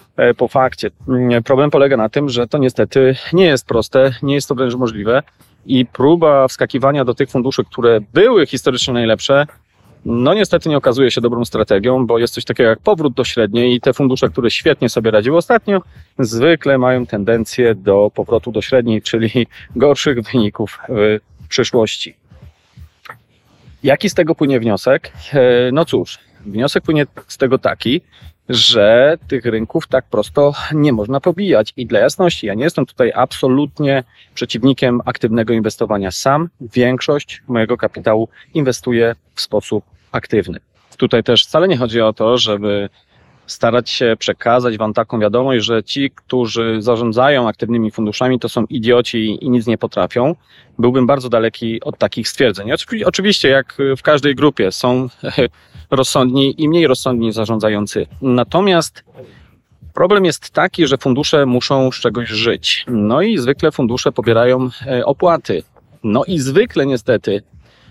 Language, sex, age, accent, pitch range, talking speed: Polish, male, 30-49, native, 115-140 Hz, 145 wpm